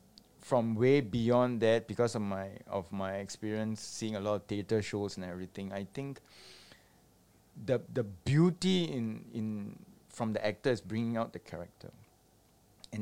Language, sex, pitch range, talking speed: English, male, 95-125 Hz, 155 wpm